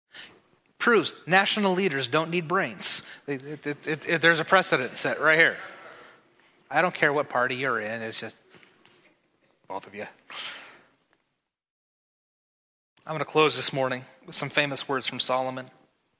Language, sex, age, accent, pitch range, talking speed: English, male, 30-49, American, 150-195 Hz, 150 wpm